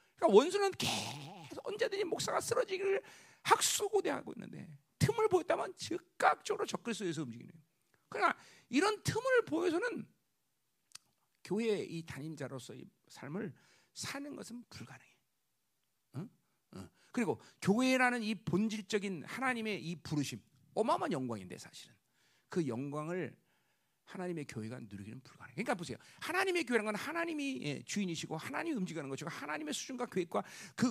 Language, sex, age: Korean, male, 40-59